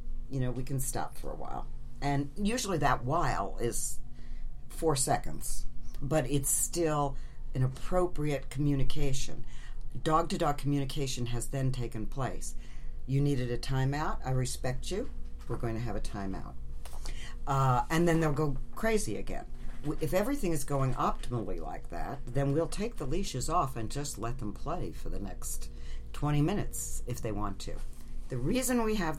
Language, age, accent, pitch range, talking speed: English, 60-79, American, 90-140 Hz, 160 wpm